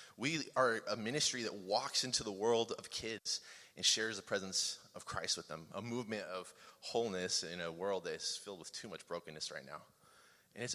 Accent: American